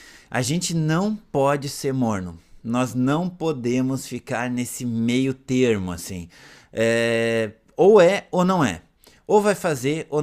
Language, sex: Portuguese, male